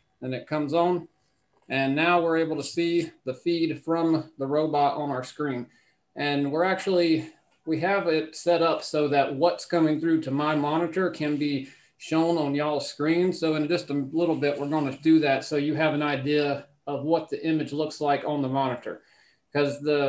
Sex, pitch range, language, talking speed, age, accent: male, 145-165 Hz, English, 200 wpm, 30-49, American